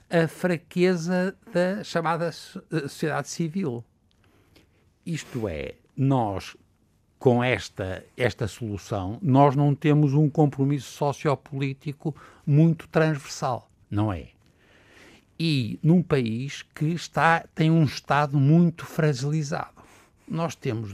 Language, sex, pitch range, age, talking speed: Portuguese, male, 110-160 Hz, 60-79, 95 wpm